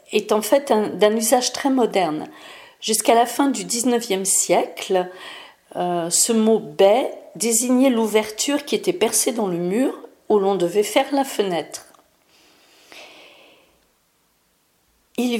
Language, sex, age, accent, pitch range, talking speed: French, female, 50-69, French, 205-280 Hz, 125 wpm